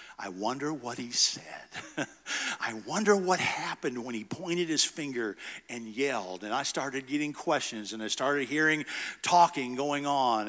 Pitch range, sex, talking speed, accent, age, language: 115-150 Hz, male, 160 wpm, American, 50-69, English